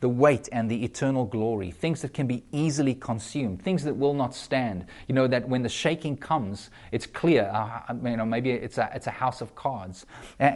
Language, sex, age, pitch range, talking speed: English, male, 30-49, 115-145 Hz, 210 wpm